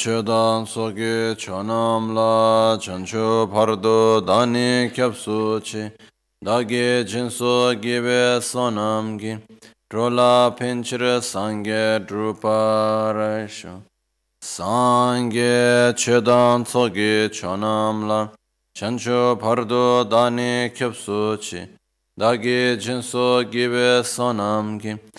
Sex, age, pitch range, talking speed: male, 20-39, 105-120 Hz, 65 wpm